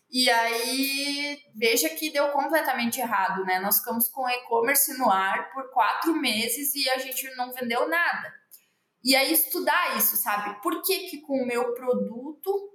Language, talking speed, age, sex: Portuguese, 165 wpm, 20-39, female